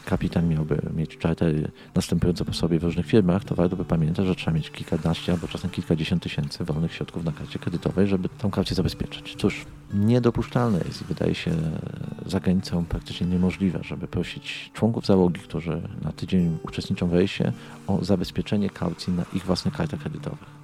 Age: 40-59